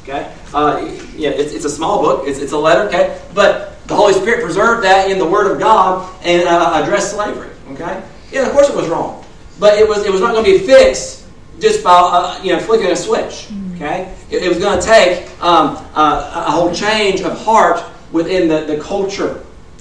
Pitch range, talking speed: 155-210 Hz, 215 wpm